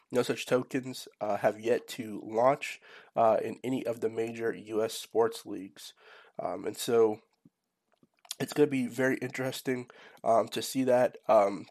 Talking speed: 160 wpm